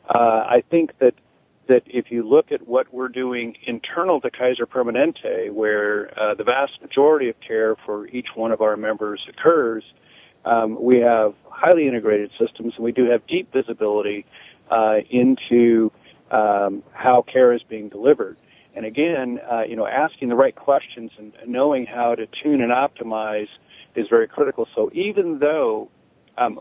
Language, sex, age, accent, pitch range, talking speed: English, male, 50-69, American, 110-140 Hz, 165 wpm